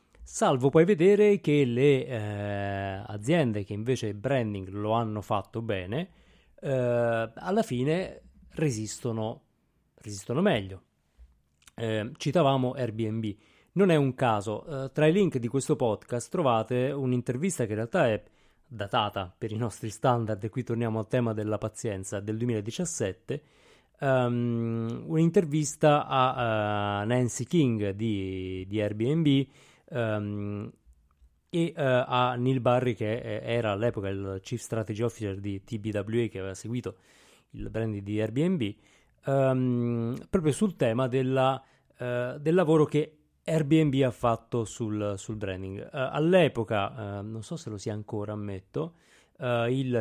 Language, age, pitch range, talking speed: Italian, 30-49, 105-135 Hz, 125 wpm